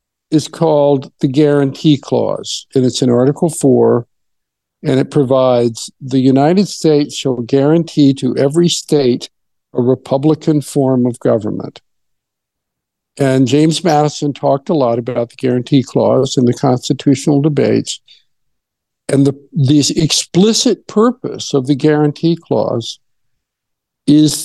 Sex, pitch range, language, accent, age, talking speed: male, 135-165 Hz, English, American, 50-69, 125 wpm